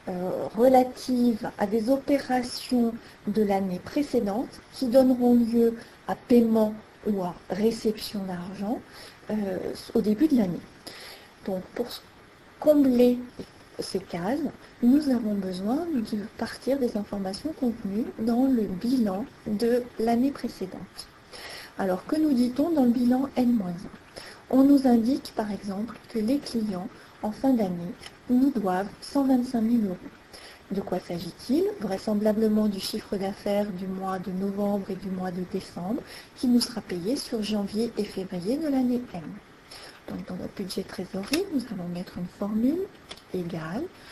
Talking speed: 135 wpm